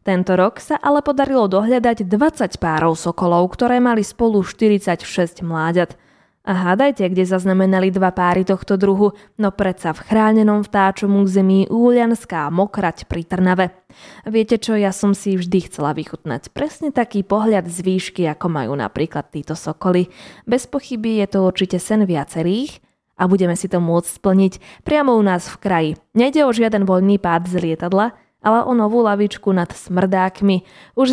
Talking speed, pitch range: 160 wpm, 165-215 Hz